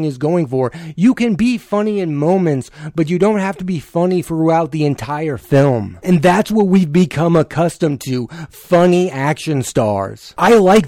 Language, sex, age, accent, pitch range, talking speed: English, male, 30-49, American, 140-180 Hz, 175 wpm